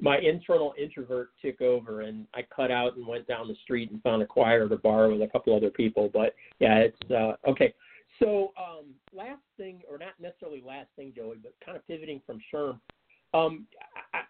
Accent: American